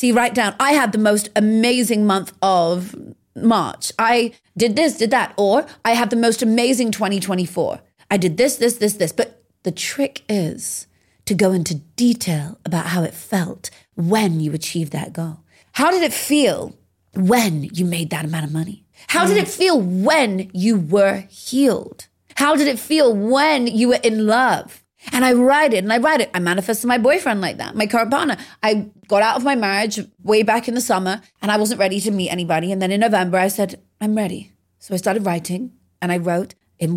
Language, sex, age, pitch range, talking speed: English, female, 30-49, 175-230 Hz, 205 wpm